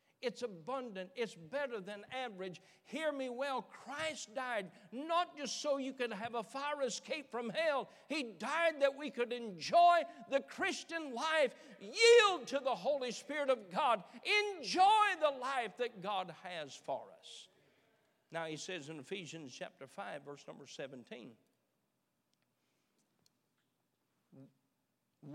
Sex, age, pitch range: male, 60-79, 170-260 Hz